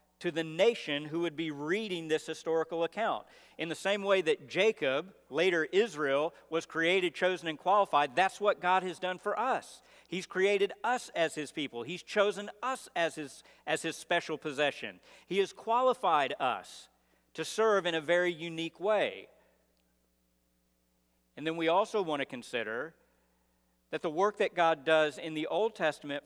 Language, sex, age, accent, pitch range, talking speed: English, male, 50-69, American, 130-180 Hz, 165 wpm